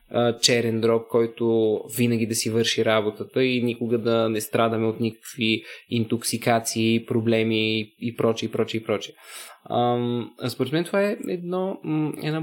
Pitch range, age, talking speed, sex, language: 120-145 Hz, 20-39, 140 wpm, male, Bulgarian